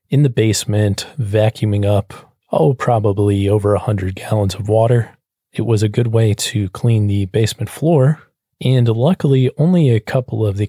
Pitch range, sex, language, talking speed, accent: 105-125 Hz, male, English, 165 wpm, American